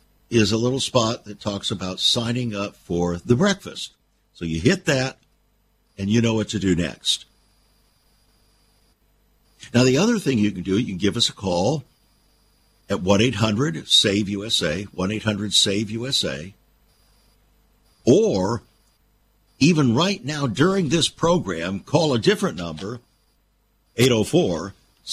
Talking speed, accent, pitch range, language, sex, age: 120 wpm, American, 100-130 Hz, English, male, 60-79